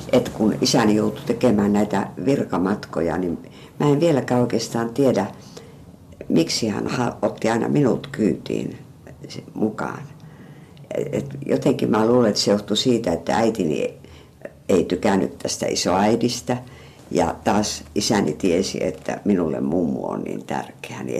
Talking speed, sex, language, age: 125 wpm, female, Finnish, 60-79